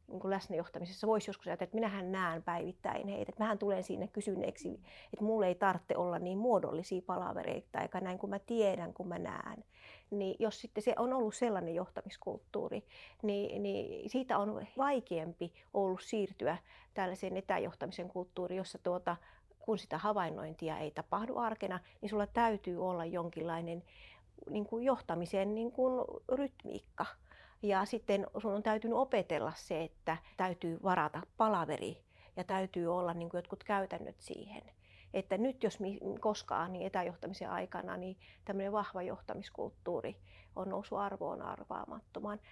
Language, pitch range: Finnish, 175-210 Hz